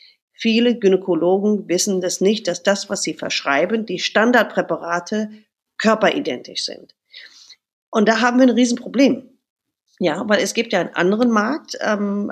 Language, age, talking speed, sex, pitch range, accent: German, 40-59, 140 wpm, female, 180-230 Hz, German